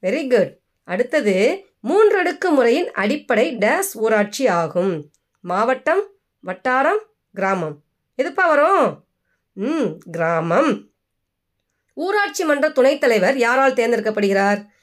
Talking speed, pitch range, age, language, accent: 85 wpm, 195-300 Hz, 20-39, Tamil, native